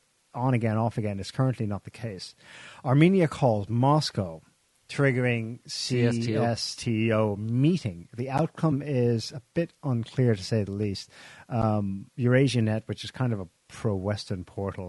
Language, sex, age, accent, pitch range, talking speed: English, male, 40-59, American, 105-130 Hz, 140 wpm